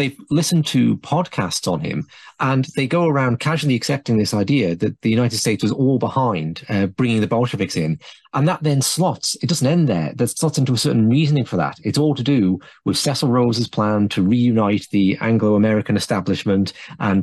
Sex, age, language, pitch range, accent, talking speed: male, 30-49, English, 110-150 Hz, British, 195 wpm